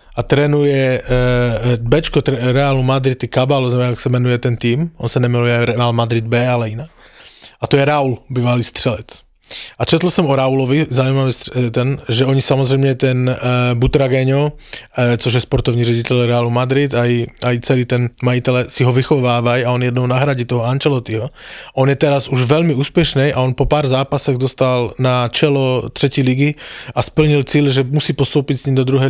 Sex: male